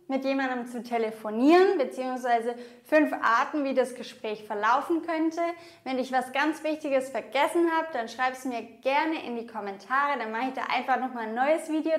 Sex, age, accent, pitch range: female, 20-39, German, 240-330 Hz